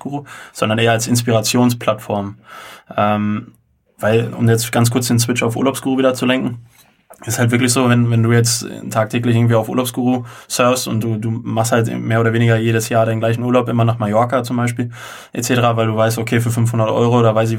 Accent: German